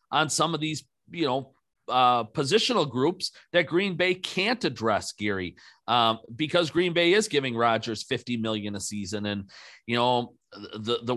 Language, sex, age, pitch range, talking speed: English, male, 40-59, 115-150 Hz, 165 wpm